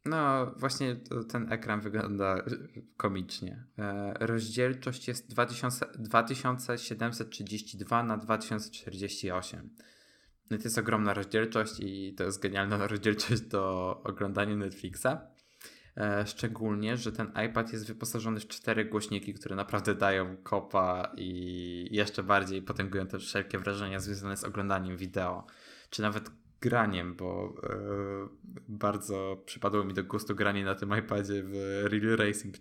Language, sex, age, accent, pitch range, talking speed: Polish, male, 20-39, native, 95-115 Hz, 120 wpm